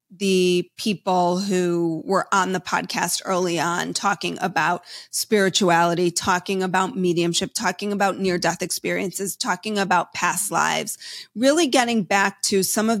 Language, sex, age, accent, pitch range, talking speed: English, female, 30-49, American, 180-225 Hz, 135 wpm